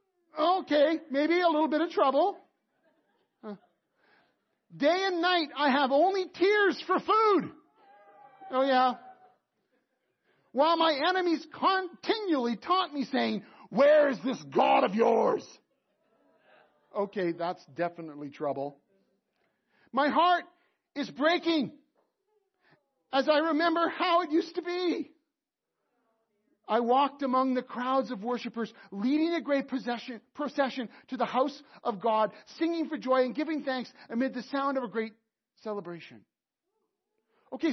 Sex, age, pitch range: male, 40-59, 240-330 Hz